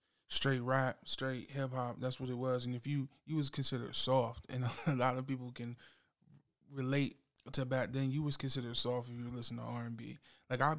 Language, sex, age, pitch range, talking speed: English, male, 20-39, 120-140 Hz, 220 wpm